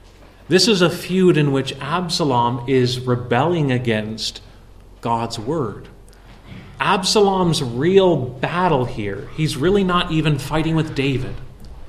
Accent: American